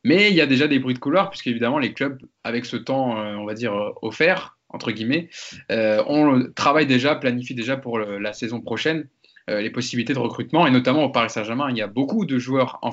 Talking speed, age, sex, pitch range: 230 wpm, 20-39, male, 115-145 Hz